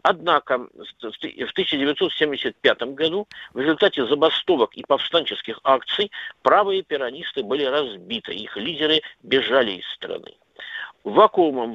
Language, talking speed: Russian, 100 wpm